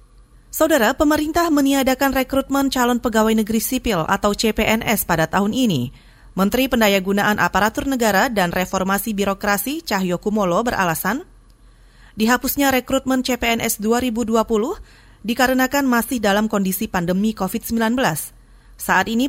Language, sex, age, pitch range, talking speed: Indonesian, female, 30-49, 185-240 Hz, 105 wpm